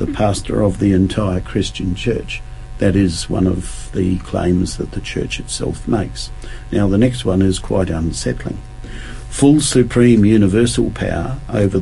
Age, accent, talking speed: 50-69, Australian, 150 wpm